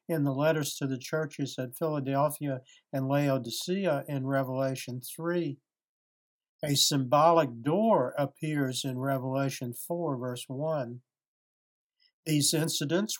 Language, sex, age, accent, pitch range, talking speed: English, male, 60-79, American, 135-160 Hz, 110 wpm